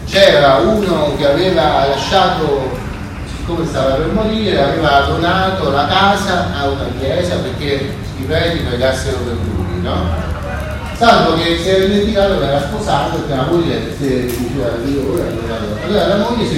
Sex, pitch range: male, 110-165 Hz